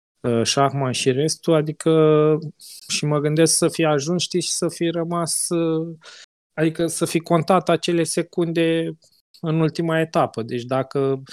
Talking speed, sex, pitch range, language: 140 wpm, male, 130-160 Hz, Romanian